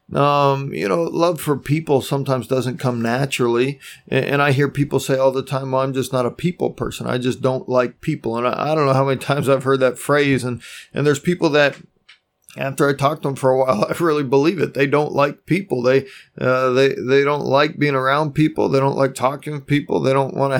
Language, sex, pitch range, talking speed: English, male, 130-145 Hz, 240 wpm